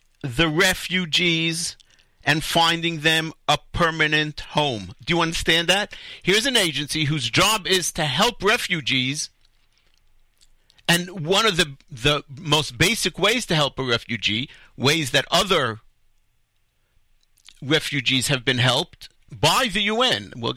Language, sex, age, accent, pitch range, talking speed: English, male, 50-69, American, 140-200 Hz, 130 wpm